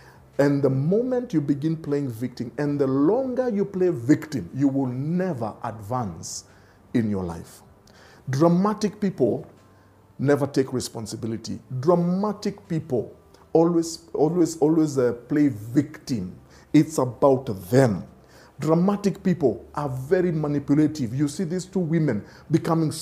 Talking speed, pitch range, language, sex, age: 125 wpm, 125-175 Hz, English, male, 50-69